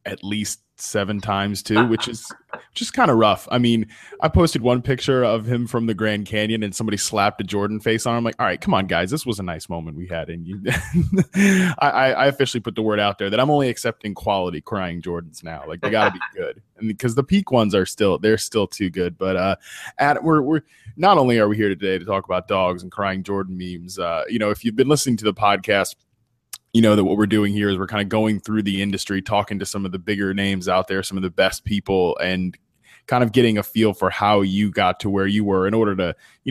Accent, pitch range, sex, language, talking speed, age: American, 95-120 Hz, male, English, 255 wpm, 20-39